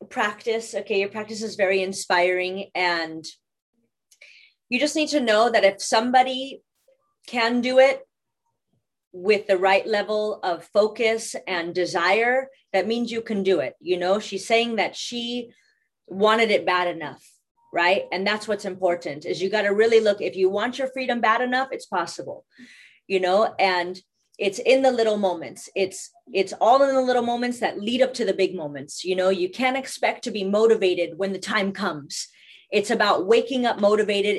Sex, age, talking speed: female, 30-49, 180 wpm